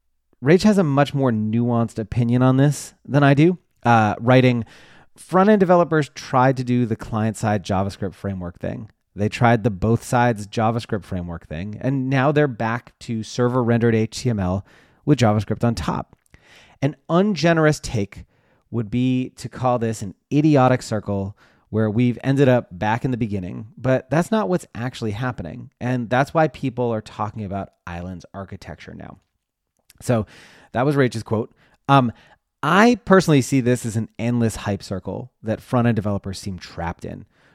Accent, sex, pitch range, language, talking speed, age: American, male, 105-135 Hz, English, 155 wpm, 30-49